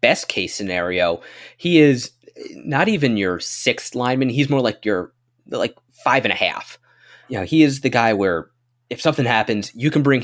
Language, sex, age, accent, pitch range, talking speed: English, male, 20-39, American, 105-130 Hz, 190 wpm